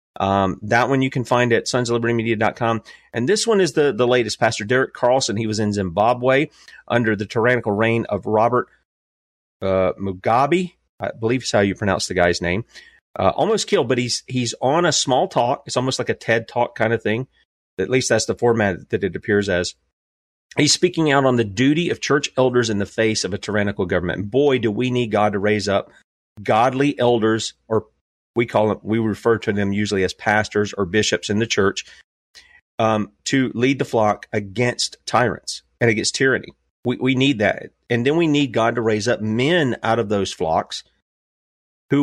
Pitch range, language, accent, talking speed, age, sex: 105-130 Hz, English, American, 200 wpm, 30-49, male